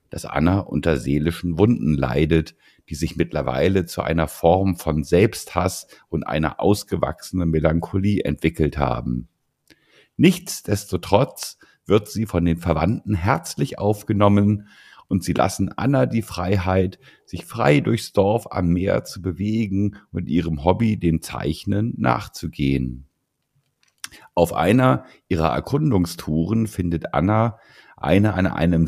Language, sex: German, male